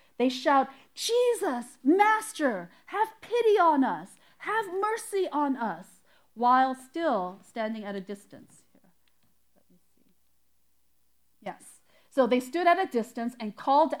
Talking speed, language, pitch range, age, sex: 135 wpm, English, 245-370 Hz, 40-59, female